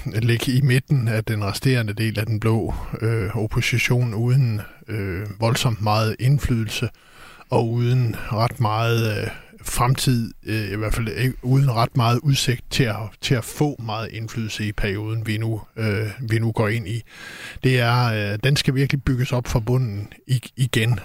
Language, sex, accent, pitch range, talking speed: Danish, male, native, 110-130 Hz, 170 wpm